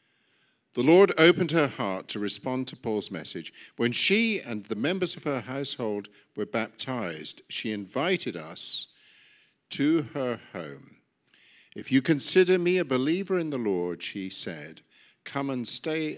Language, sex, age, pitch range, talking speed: English, male, 50-69, 105-145 Hz, 150 wpm